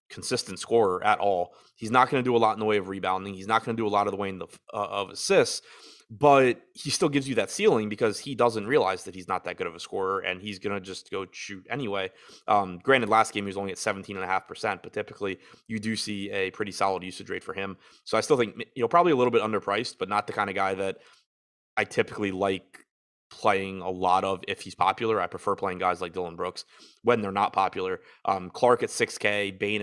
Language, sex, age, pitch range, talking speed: English, male, 20-39, 95-110 Hz, 265 wpm